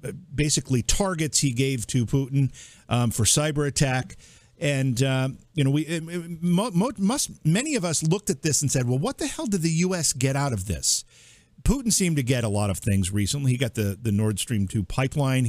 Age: 50-69